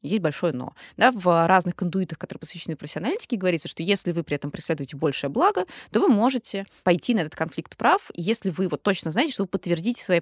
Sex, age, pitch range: female, 20-39, 160-210 Hz